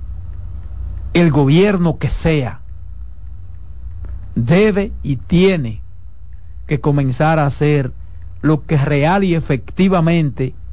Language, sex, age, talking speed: Spanish, male, 50-69, 90 wpm